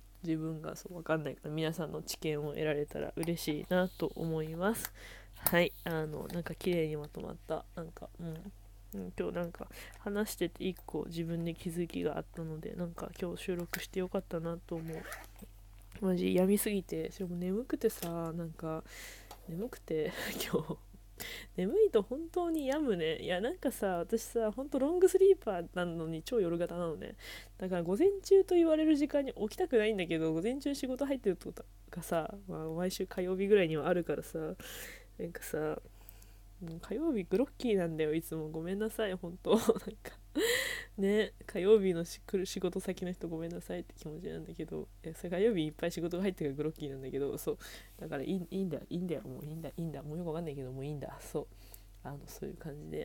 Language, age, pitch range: Japanese, 20-39, 155-205 Hz